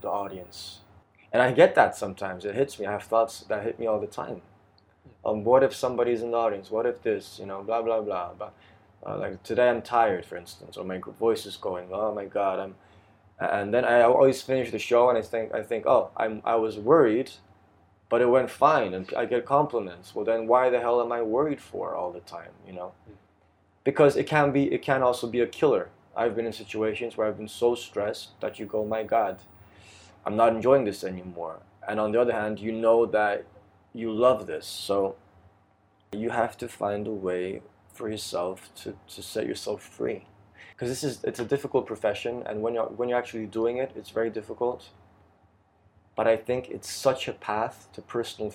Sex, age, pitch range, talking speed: male, 20-39, 100-120 Hz, 215 wpm